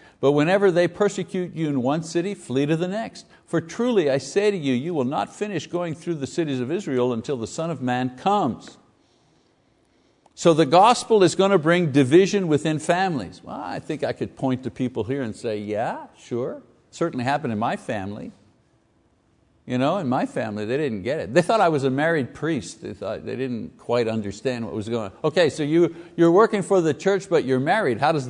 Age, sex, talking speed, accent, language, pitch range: 60-79, male, 215 wpm, American, English, 135-180 Hz